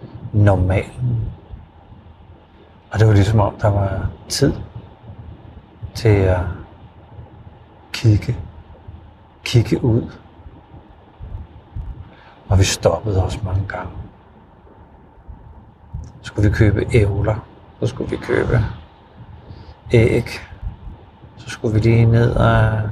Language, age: Danish, 50-69